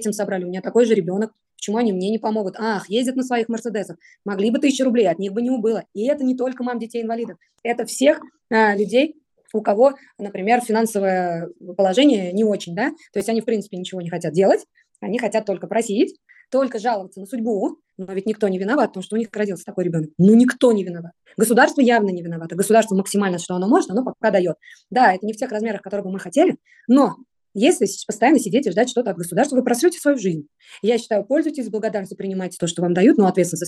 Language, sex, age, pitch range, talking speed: Russian, female, 20-39, 195-265 Hz, 215 wpm